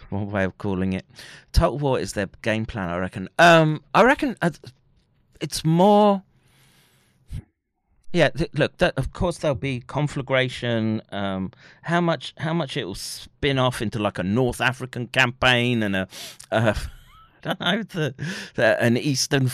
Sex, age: male, 40-59